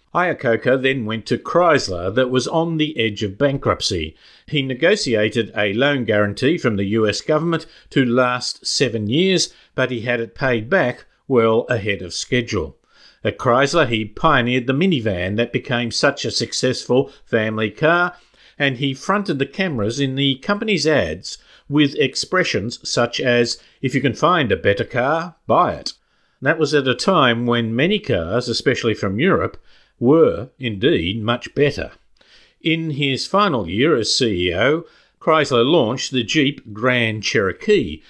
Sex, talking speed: male, 155 wpm